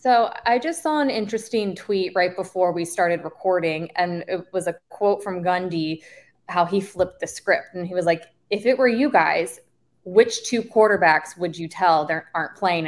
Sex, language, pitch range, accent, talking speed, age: female, English, 185-270 Hz, American, 195 wpm, 20-39